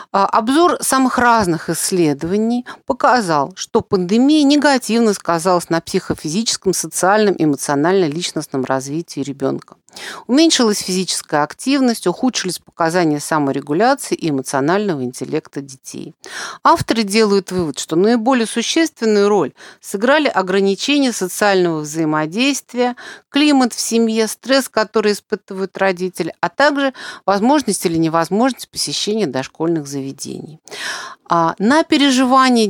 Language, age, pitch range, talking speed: Russian, 50-69, 165-245 Hz, 95 wpm